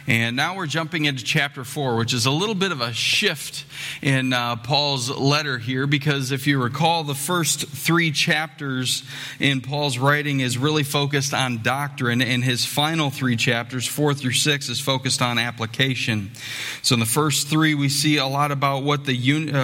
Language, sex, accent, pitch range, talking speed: English, male, American, 130-145 Hz, 190 wpm